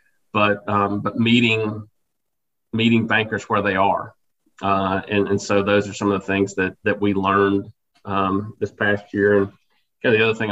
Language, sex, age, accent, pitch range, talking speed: English, male, 40-59, American, 100-115 Hz, 175 wpm